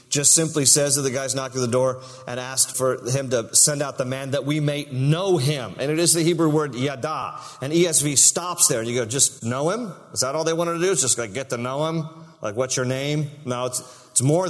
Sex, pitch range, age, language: male, 130-160 Hz, 40-59, English